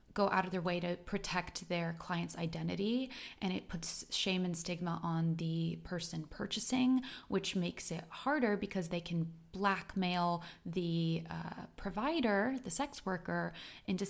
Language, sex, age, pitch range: English, female, 20-39, 175-225 Hz